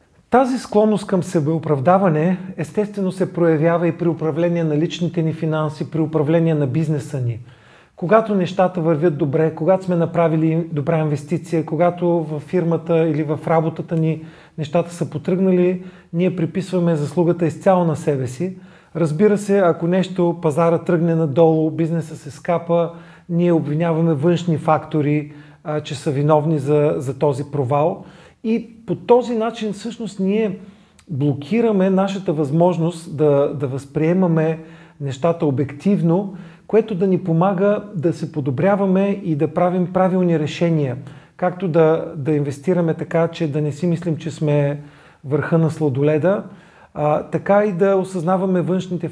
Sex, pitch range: male, 155-180 Hz